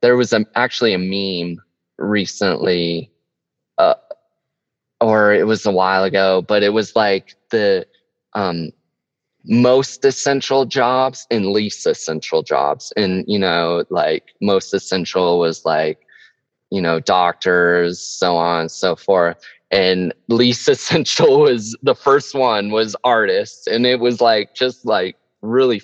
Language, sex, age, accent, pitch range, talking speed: English, male, 20-39, American, 90-130 Hz, 135 wpm